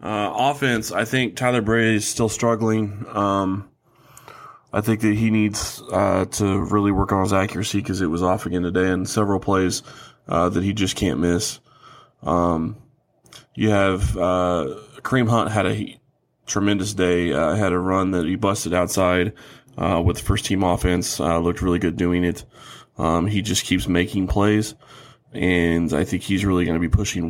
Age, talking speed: 20-39, 180 wpm